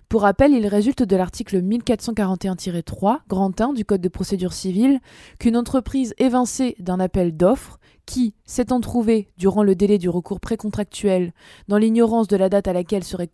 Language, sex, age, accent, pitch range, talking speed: French, female, 20-39, French, 185-235 Hz, 165 wpm